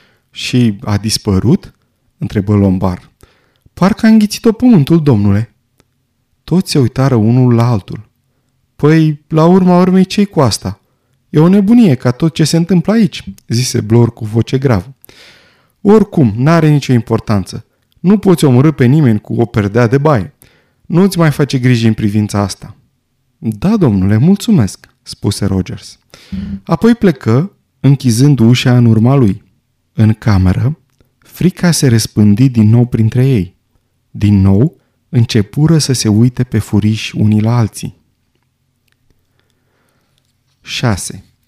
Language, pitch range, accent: Romanian, 110-155 Hz, native